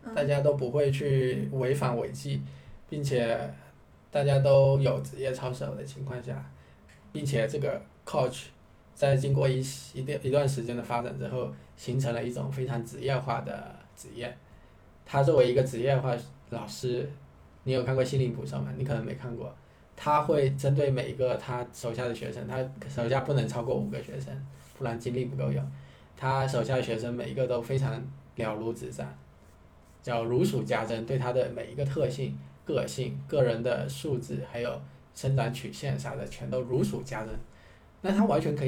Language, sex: Chinese, male